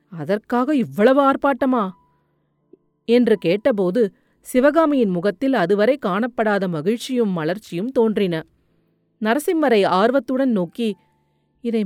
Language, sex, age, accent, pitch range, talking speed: Tamil, female, 40-59, native, 185-245 Hz, 80 wpm